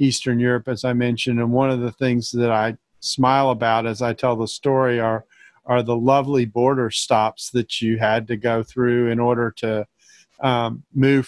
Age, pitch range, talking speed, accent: 40-59, 125-150 Hz, 190 wpm, American